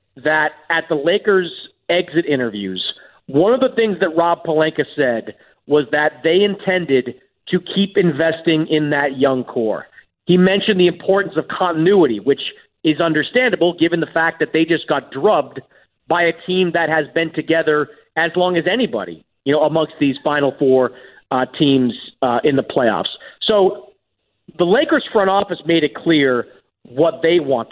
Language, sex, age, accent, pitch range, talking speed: English, male, 40-59, American, 150-185 Hz, 165 wpm